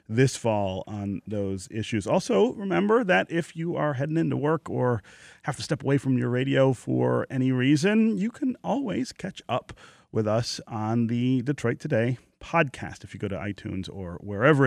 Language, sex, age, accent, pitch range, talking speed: English, male, 30-49, American, 110-155 Hz, 180 wpm